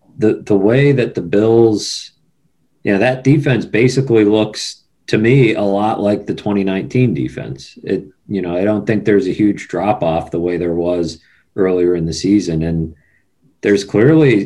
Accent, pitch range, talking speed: American, 90-110 Hz, 175 wpm